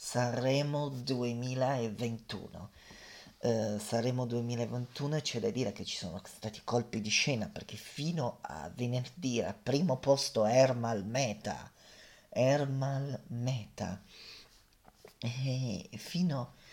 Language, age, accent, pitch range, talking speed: Italian, 30-49, native, 110-135 Hz, 95 wpm